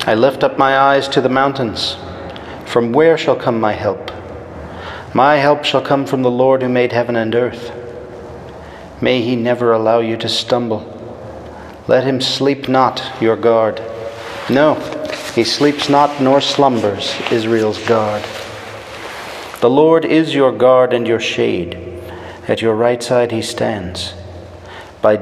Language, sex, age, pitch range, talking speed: English, male, 40-59, 95-130 Hz, 150 wpm